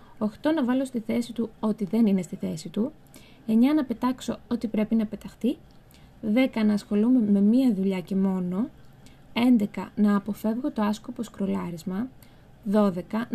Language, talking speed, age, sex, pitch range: Greek, 155 wpm, 20-39, female, 200-235 Hz